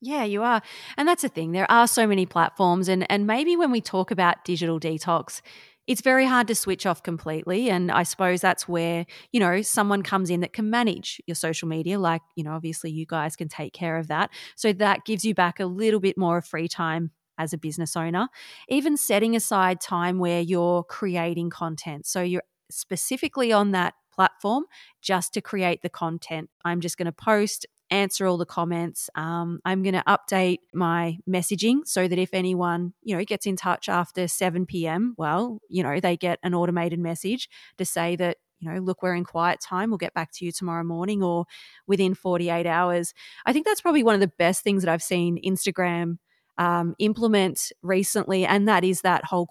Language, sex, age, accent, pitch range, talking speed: English, female, 30-49, Australian, 170-205 Hz, 200 wpm